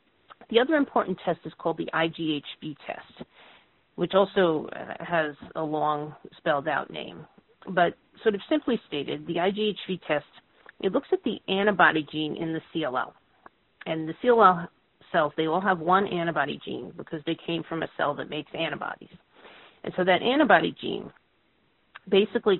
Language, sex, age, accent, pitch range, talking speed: English, female, 40-59, American, 160-210 Hz, 155 wpm